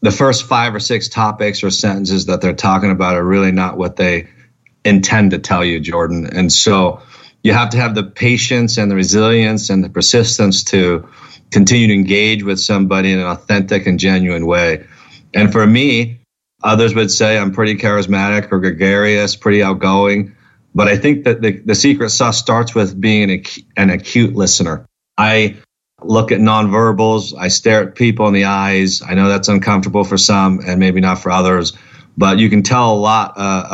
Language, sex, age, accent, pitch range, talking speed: English, male, 40-59, American, 95-115 Hz, 185 wpm